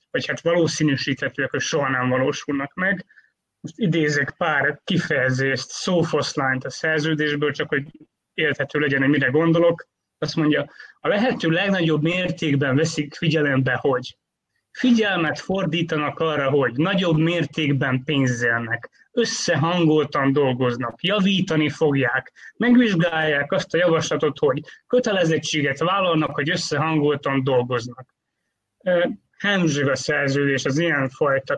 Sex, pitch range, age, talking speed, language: male, 140-170 Hz, 30-49, 110 wpm, Hungarian